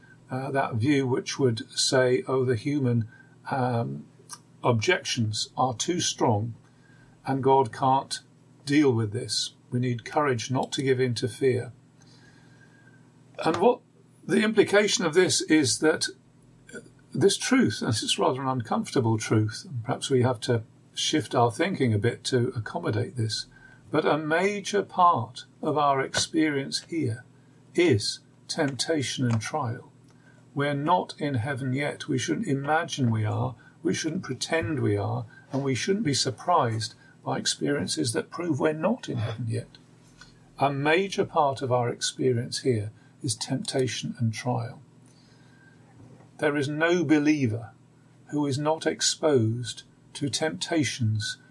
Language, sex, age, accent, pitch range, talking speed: English, male, 50-69, British, 125-145 Hz, 140 wpm